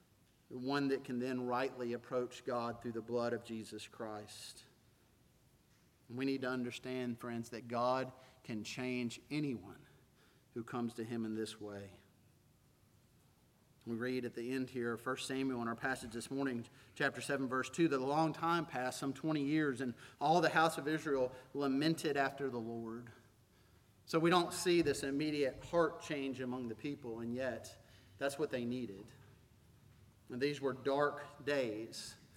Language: English